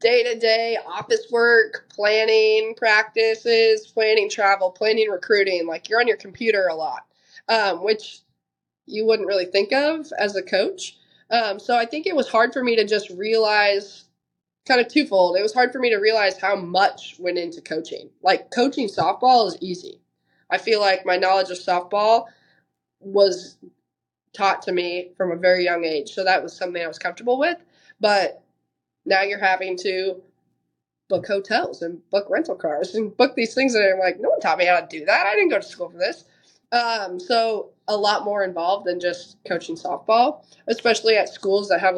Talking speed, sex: 185 wpm, female